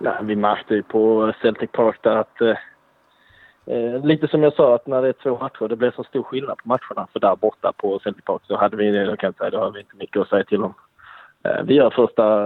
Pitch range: 105-135 Hz